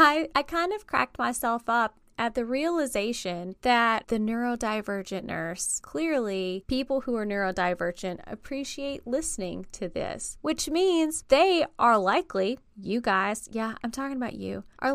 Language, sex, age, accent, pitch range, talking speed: English, female, 20-39, American, 210-295 Hz, 145 wpm